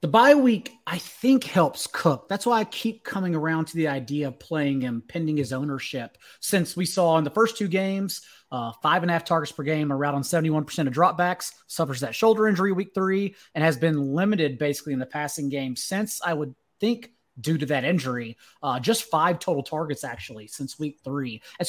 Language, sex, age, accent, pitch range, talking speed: English, male, 30-49, American, 145-190 Hz, 210 wpm